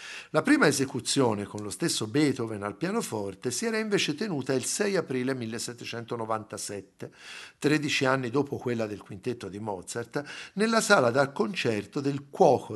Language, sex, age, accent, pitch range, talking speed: Italian, male, 50-69, native, 110-150 Hz, 145 wpm